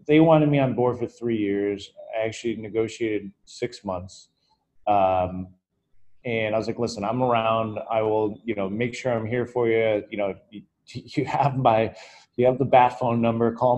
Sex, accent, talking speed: male, American, 195 wpm